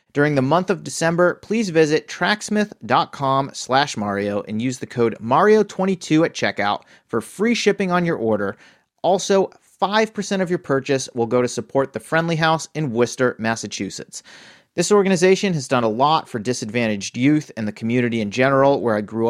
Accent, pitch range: American, 120-165 Hz